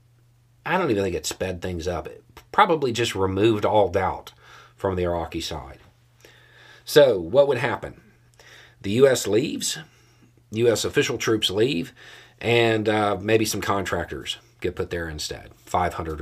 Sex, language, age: male, English, 40-59